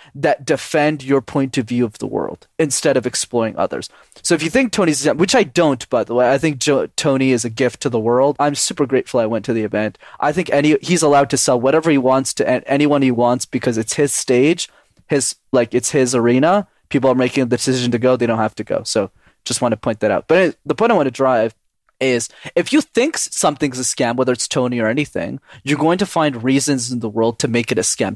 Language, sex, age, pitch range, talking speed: English, male, 20-39, 130-165 Hz, 245 wpm